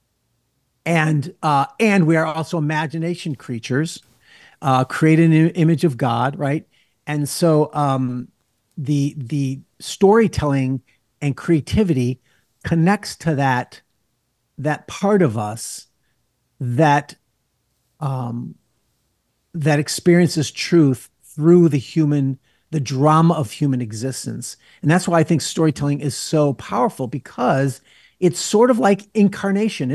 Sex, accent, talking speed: male, American, 115 wpm